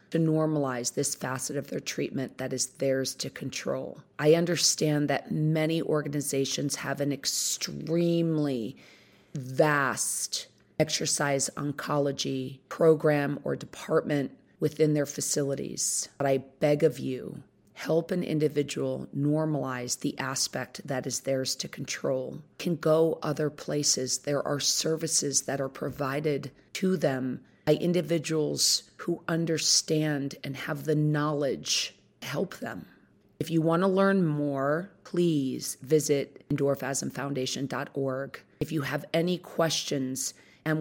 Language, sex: English, female